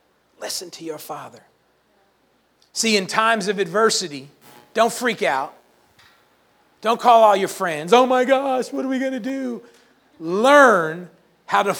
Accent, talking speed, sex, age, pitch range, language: American, 145 wpm, male, 40-59, 225-325 Hz, English